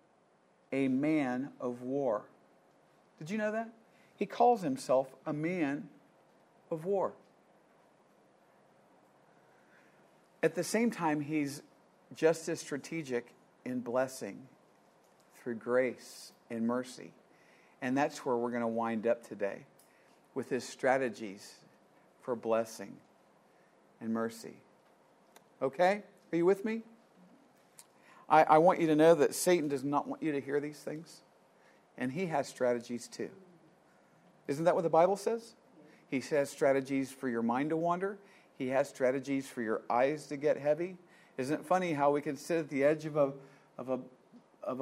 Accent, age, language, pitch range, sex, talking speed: American, 50-69, English, 125-160 Hz, male, 145 wpm